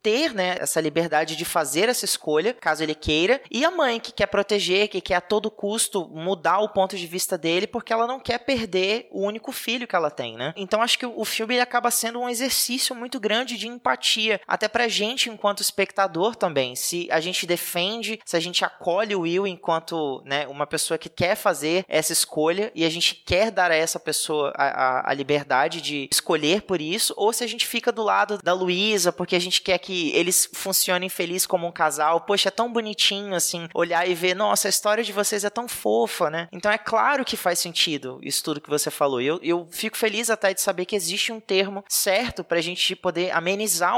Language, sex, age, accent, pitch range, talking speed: Portuguese, male, 20-39, Brazilian, 170-220 Hz, 220 wpm